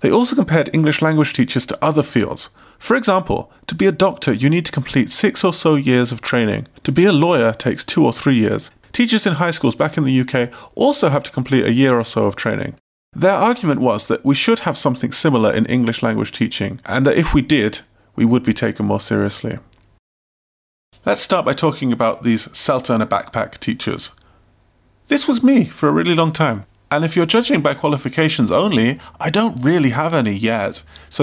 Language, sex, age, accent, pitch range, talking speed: English, male, 30-49, British, 120-165 Hz, 205 wpm